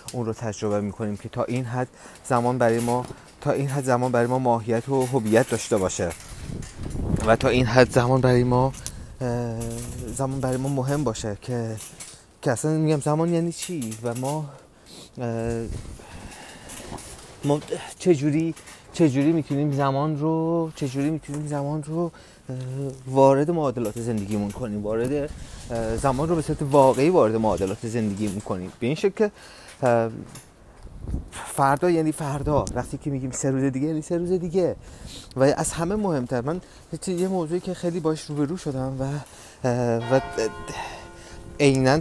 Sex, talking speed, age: male, 145 wpm, 30-49